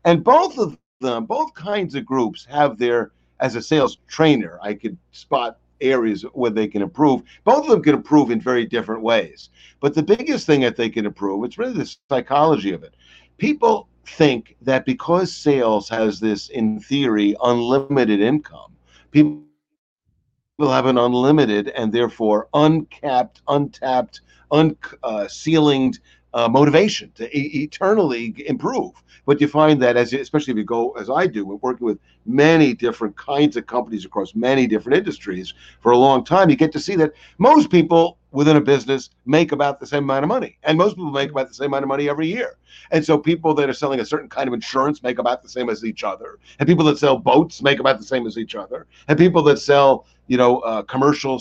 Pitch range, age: 120-155 Hz, 50-69